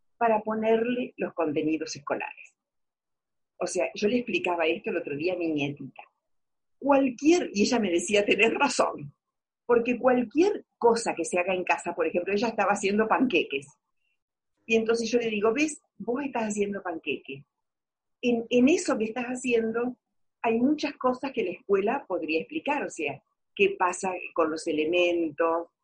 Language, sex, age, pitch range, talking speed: Spanish, female, 40-59, 165-240 Hz, 160 wpm